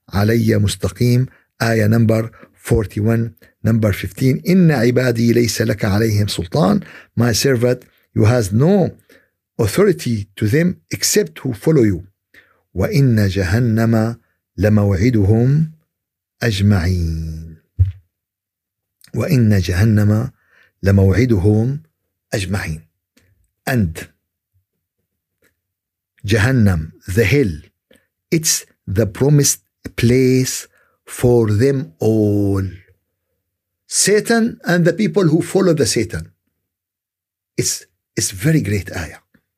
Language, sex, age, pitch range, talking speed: Arabic, male, 50-69, 95-155 Hz, 90 wpm